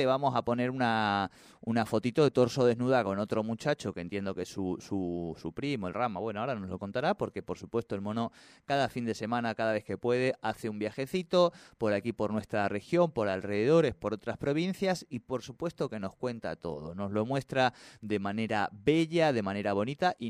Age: 30-49